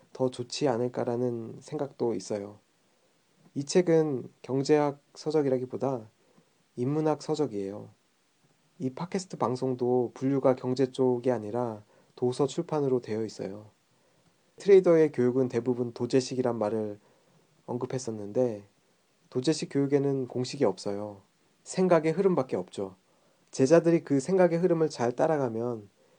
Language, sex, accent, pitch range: Korean, male, native, 125-155 Hz